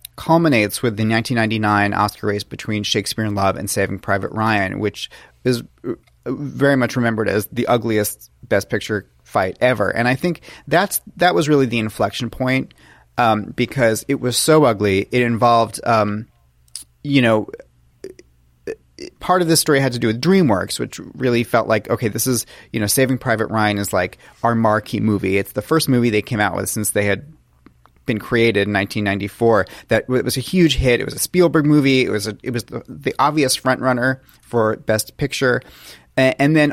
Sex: male